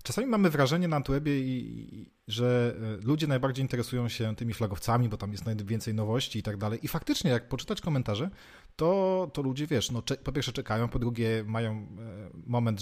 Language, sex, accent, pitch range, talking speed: Polish, male, native, 105-130 Hz, 180 wpm